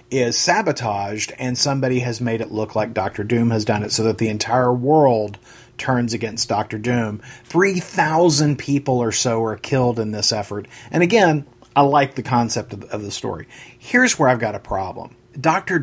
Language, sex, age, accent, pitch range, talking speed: English, male, 40-59, American, 110-135 Hz, 185 wpm